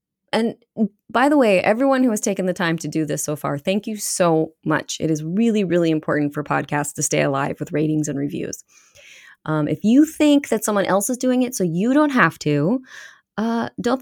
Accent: American